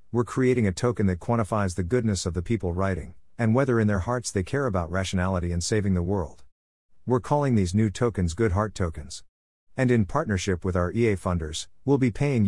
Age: 50-69